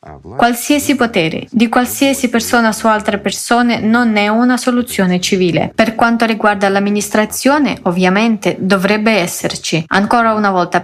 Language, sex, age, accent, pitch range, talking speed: Italian, female, 20-39, native, 195-240 Hz, 125 wpm